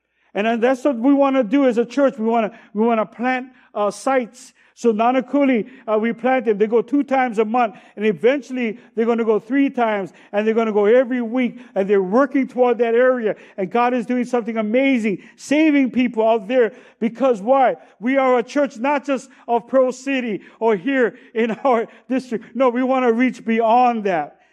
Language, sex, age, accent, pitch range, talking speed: English, male, 60-79, American, 225-260 Hz, 210 wpm